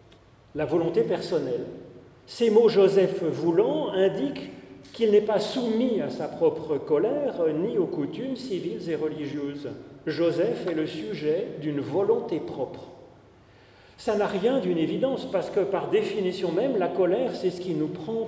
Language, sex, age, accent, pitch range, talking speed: French, male, 40-59, French, 150-225 Hz, 160 wpm